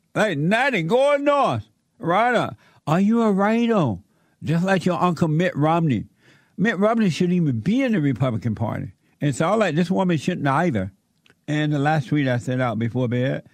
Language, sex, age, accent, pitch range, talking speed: English, male, 60-79, American, 125-185 Hz, 185 wpm